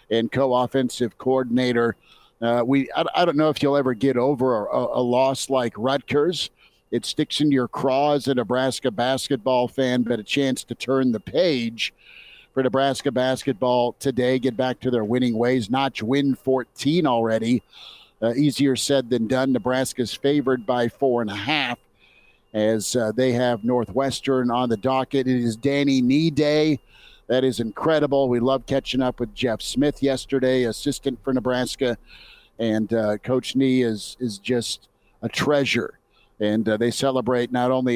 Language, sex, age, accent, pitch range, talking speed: English, male, 50-69, American, 120-135 Hz, 165 wpm